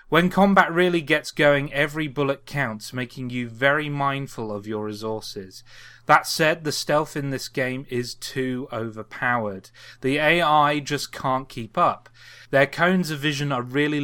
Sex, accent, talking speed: male, British, 160 wpm